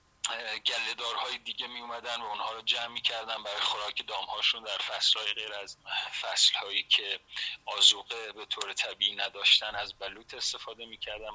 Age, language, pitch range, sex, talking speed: 30-49, Persian, 115-130 Hz, male, 145 wpm